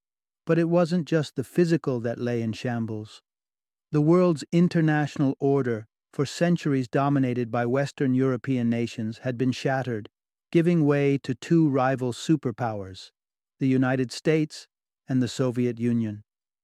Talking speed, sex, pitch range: 135 wpm, male, 120-150 Hz